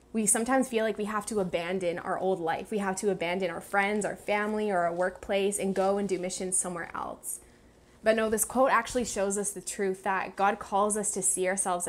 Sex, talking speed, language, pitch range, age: female, 225 wpm, English, 185-210 Hz, 10-29